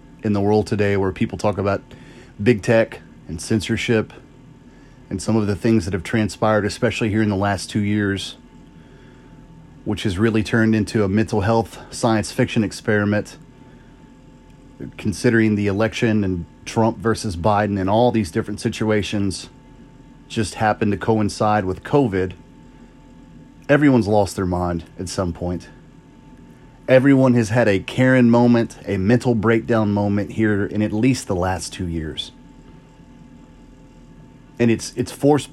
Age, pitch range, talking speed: 30-49, 100-115 Hz, 145 wpm